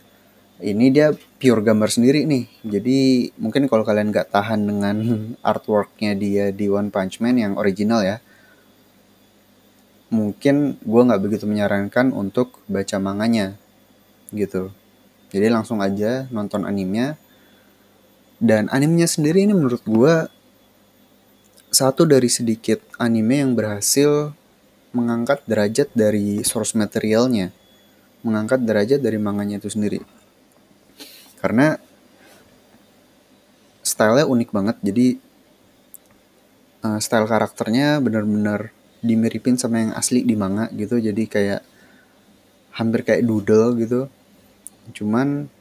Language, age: Indonesian, 20-39